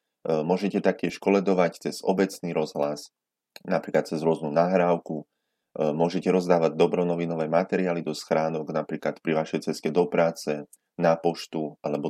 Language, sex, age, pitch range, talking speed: Slovak, male, 30-49, 75-90 Hz, 125 wpm